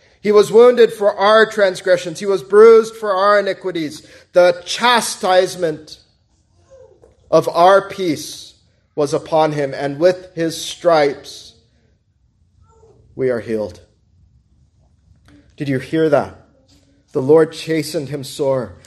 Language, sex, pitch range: English, male, 110-165 Hz